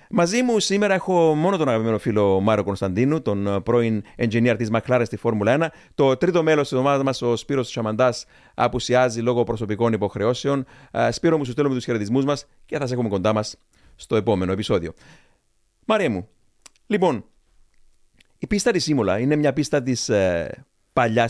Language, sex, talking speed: Greek, male, 165 wpm